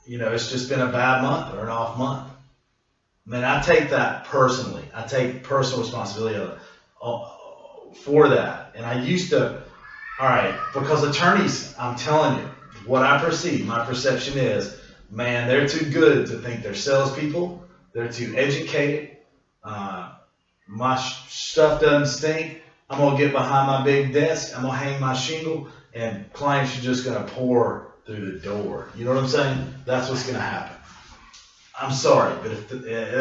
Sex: male